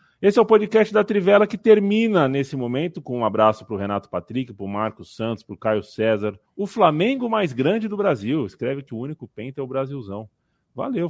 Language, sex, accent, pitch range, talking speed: Portuguese, male, Brazilian, 110-155 Hz, 205 wpm